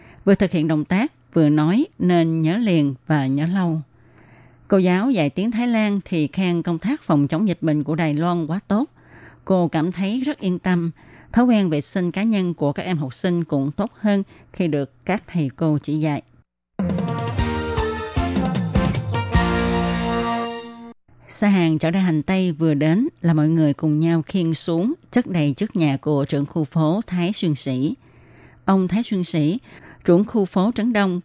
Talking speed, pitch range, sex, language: 180 wpm, 150-195 Hz, female, Vietnamese